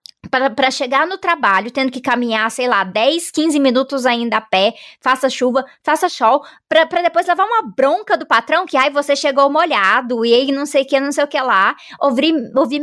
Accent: Brazilian